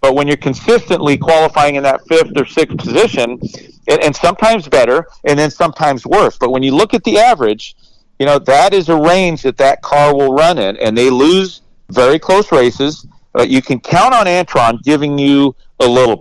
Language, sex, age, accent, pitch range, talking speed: English, male, 50-69, American, 130-175 Hz, 200 wpm